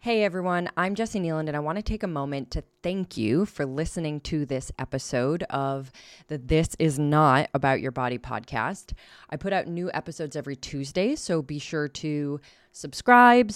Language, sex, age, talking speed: English, female, 20-39, 180 wpm